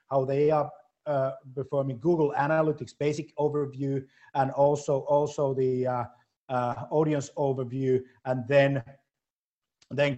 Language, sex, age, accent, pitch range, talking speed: Finnish, male, 30-49, native, 125-145 Hz, 120 wpm